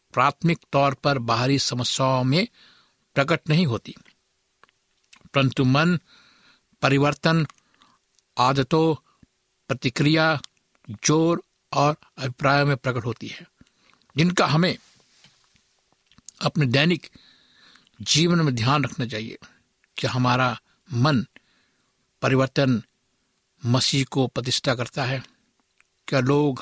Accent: native